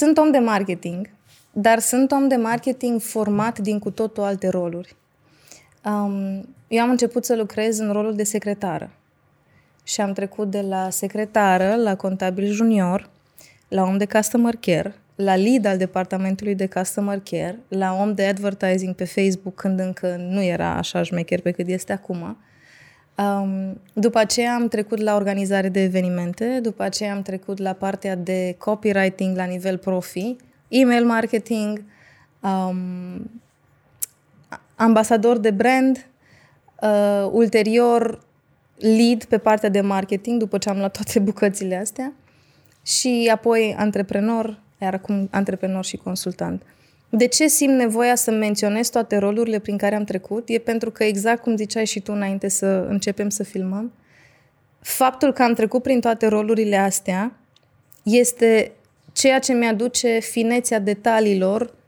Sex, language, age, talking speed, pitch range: female, Romanian, 20-39, 145 wpm, 190-230 Hz